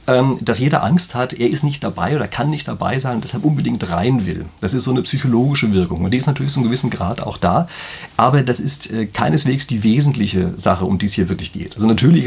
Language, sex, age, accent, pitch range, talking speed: German, male, 40-59, German, 105-150 Hz, 240 wpm